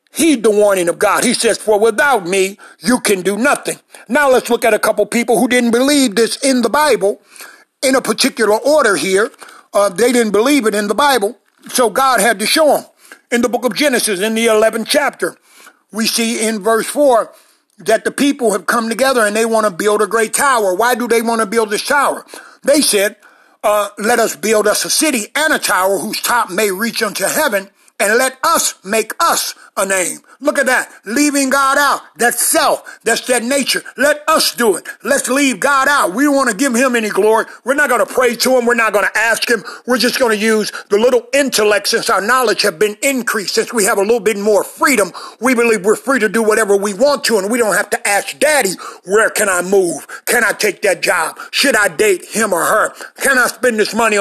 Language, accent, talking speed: English, American, 230 wpm